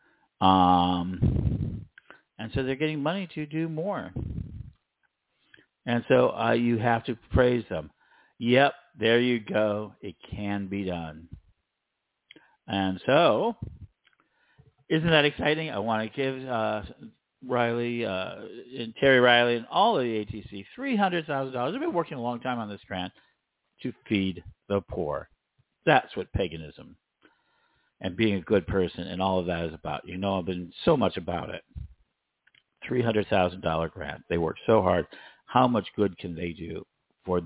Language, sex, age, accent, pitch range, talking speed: English, male, 50-69, American, 100-135 Hz, 160 wpm